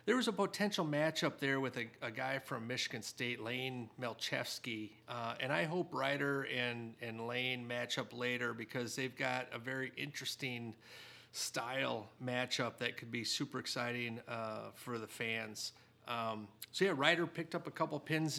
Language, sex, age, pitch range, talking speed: English, male, 40-59, 115-145 Hz, 165 wpm